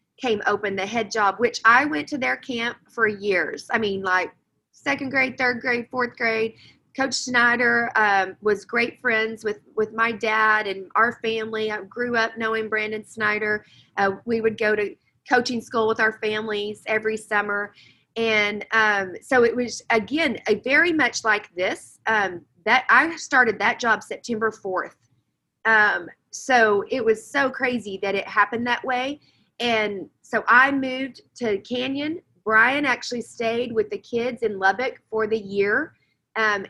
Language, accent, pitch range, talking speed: English, American, 205-240 Hz, 160 wpm